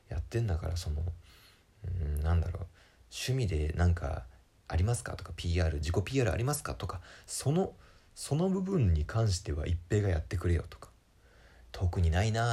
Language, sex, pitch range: Japanese, male, 85-115 Hz